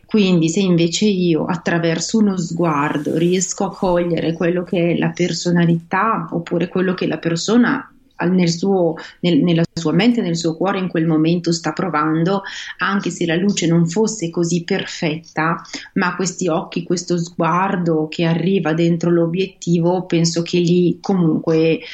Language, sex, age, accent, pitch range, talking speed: Italian, female, 30-49, native, 160-185 Hz, 140 wpm